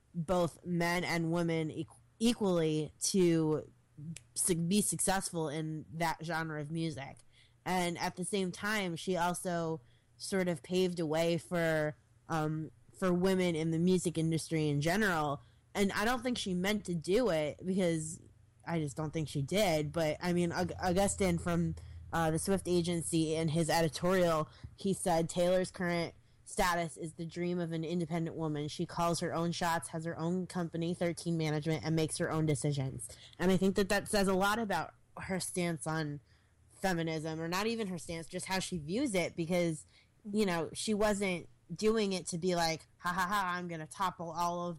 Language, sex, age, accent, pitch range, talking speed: English, female, 20-39, American, 155-180 Hz, 175 wpm